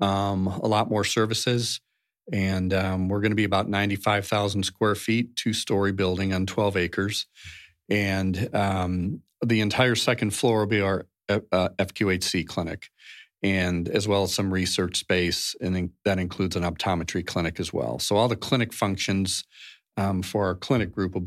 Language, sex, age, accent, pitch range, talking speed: English, male, 40-59, American, 95-110 Hz, 165 wpm